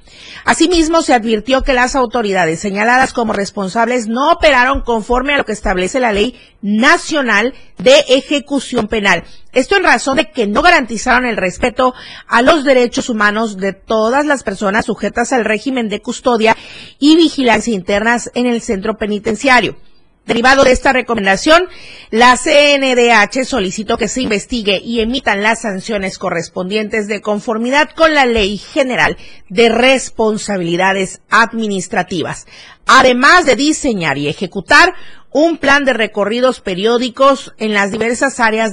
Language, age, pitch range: Spanish, 40-59, 215-280 Hz